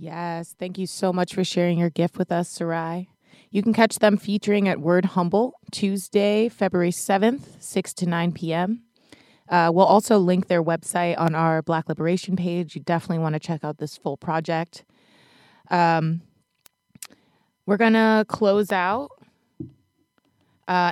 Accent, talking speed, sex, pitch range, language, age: American, 150 wpm, female, 165-195 Hz, English, 20-39